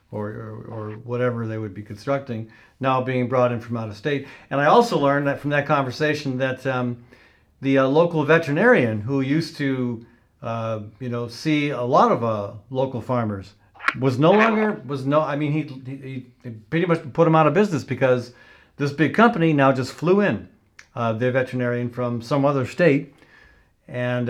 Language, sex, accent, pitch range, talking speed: English, male, American, 125-160 Hz, 185 wpm